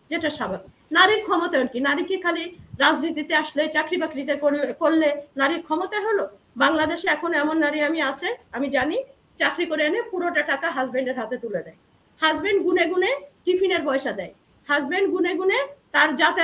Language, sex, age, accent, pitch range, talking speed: Bengali, female, 50-69, native, 285-360 Hz, 35 wpm